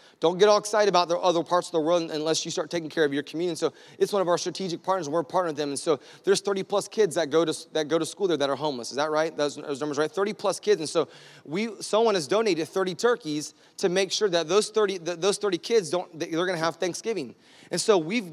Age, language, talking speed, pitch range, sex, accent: 30-49, English, 280 wpm, 170-215 Hz, male, American